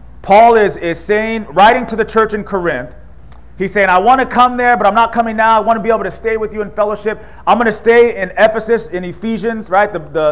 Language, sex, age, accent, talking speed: English, male, 30-49, American, 255 wpm